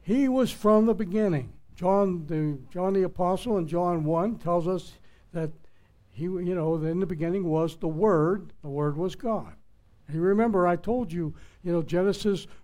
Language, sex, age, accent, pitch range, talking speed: English, male, 60-79, American, 170-225 Hz, 185 wpm